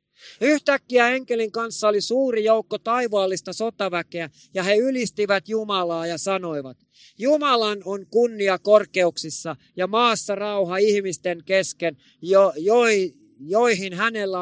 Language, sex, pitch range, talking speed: Finnish, male, 180-230 Hz, 110 wpm